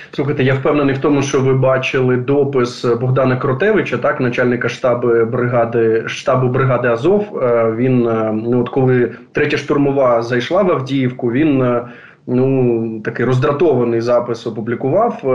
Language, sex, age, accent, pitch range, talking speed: Ukrainian, male, 20-39, native, 120-145 Hz, 130 wpm